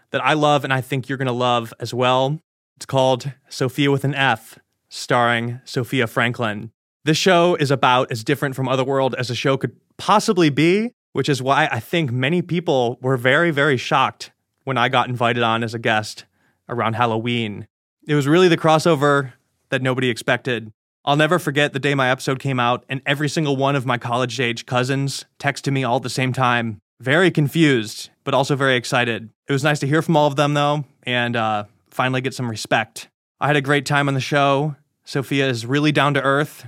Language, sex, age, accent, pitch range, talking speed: English, male, 20-39, American, 120-140 Hz, 210 wpm